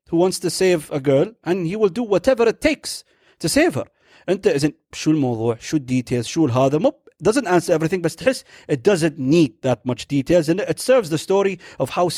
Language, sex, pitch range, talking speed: Arabic, male, 130-175 Hz, 180 wpm